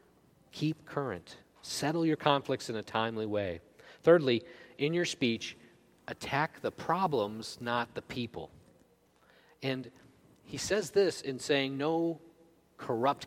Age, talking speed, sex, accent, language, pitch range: 40-59, 120 wpm, male, American, English, 110-140 Hz